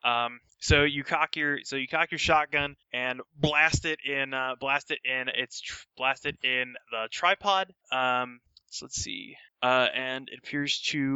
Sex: male